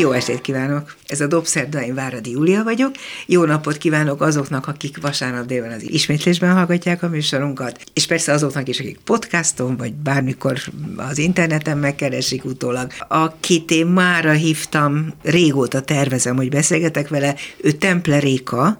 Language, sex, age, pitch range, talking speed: Hungarian, female, 60-79, 125-165 Hz, 145 wpm